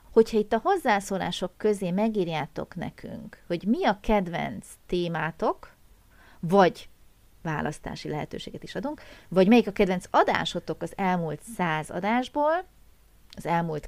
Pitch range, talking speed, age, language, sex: 170-235 Hz, 120 wpm, 30-49, Hungarian, female